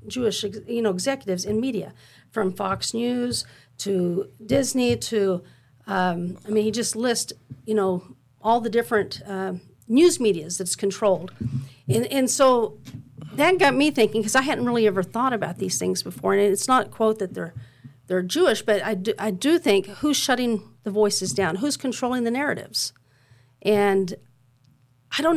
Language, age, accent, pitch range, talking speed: English, 50-69, American, 170-235 Hz, 170 wpm